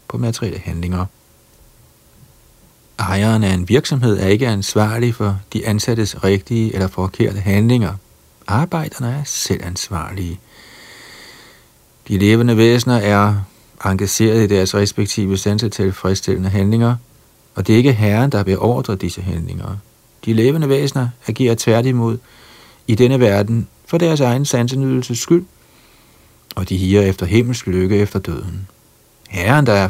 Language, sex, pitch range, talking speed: Danish, male, 95-115 Hz, 125 wpm